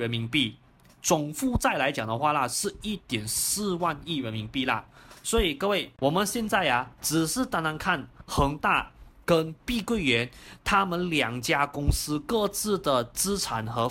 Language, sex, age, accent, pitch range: Chinese, male, 30-49, native, 125-200 Hz